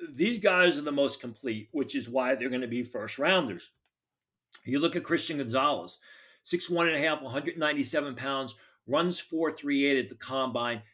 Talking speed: 175 wpm